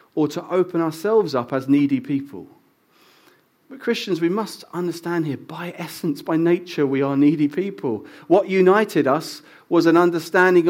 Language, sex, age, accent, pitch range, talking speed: English, male, 40-59, British, 150-215 Hz, 155 wpm